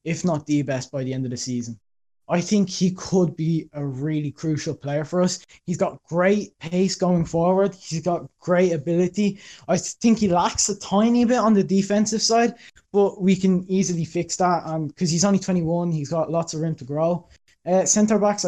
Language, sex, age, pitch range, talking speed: English, male, 20-39, 160-200 Hz, 200 wpm